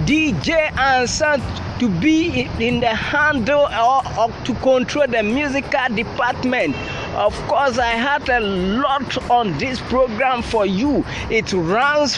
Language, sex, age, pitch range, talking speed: English, male, 20-39, 225-295 Hz, 130 wpm